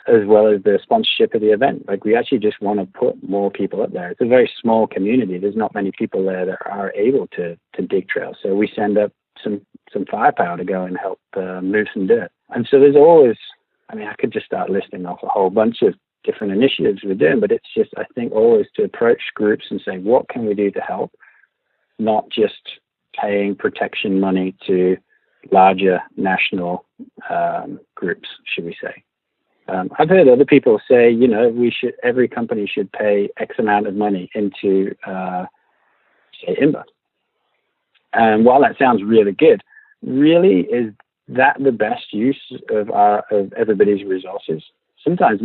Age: 40-59